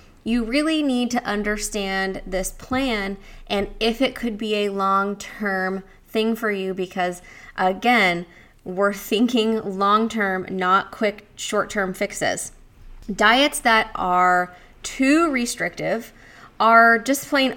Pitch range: 190-240 Hz